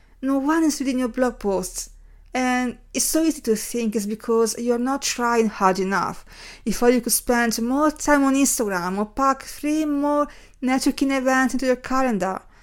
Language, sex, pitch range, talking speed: English, female, 220-270 Hz, 180 wpm